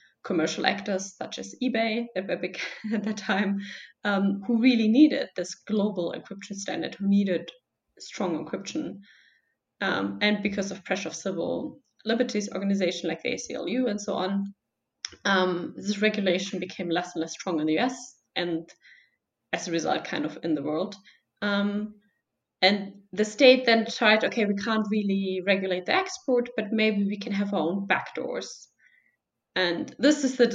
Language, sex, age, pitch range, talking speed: English, female, 20-39, 185-225 Hz, 155 wpm